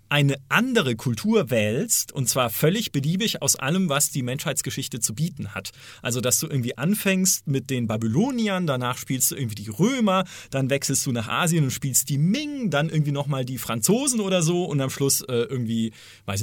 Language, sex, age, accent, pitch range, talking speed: German, male, 40-59, German, 115-165 Hz, 190 wpm